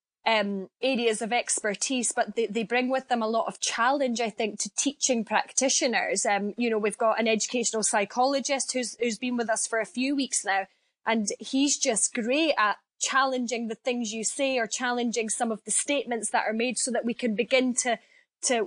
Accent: British